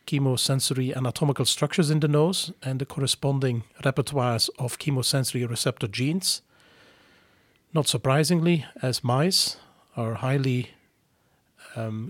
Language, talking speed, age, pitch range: English, 105 wpm, 40-59, 125-155 Hz